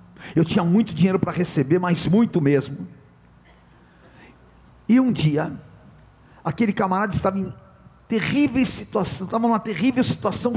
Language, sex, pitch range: Portuguese, male, 130-215 Hz